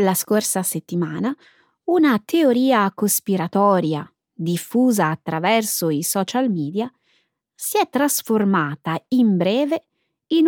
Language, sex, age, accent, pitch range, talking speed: Italian, female, 20-39, native, 175-255 Hz, 95 wpm